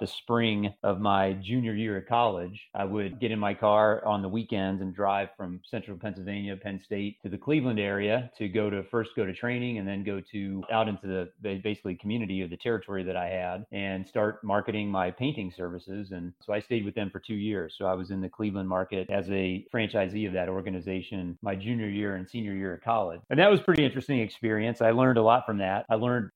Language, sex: English, male